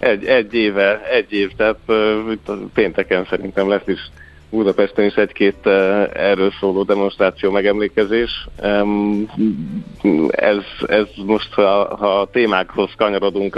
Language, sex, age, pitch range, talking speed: Hungarian, male, 50-69, 85-100 Hz, 105 wpm